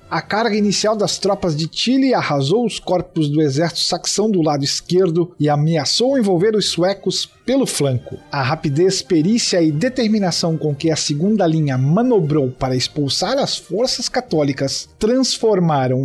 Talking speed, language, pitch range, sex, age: 150 wpm, Portuguese, 150-205 Hz, male, 50-69